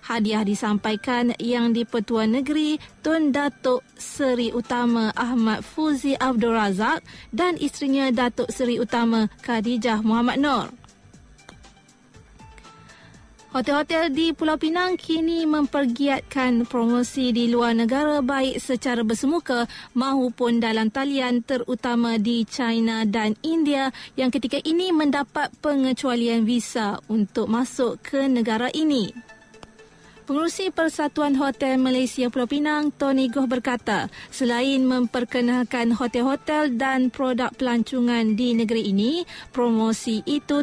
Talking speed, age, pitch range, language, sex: 110 wpm, 20-39, 230-275 Hz, Malay, female